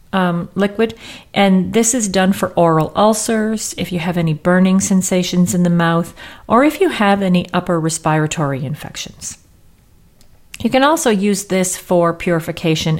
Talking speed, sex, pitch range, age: 150 wpm, female, 160-200 Hz, 40-59